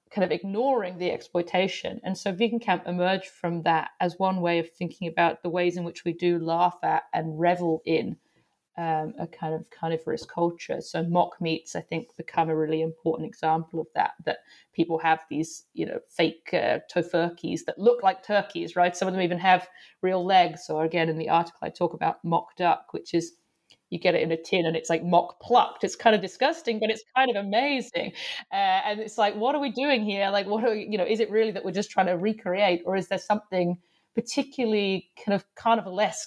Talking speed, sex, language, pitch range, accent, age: 220 wpm, female, English, 165-200 Hz, British, 40-59